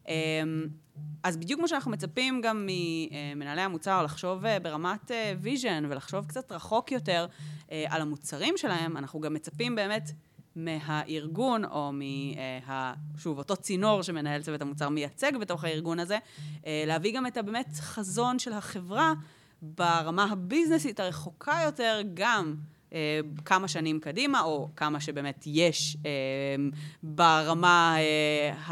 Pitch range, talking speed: 150-195 Hz, 120 wpm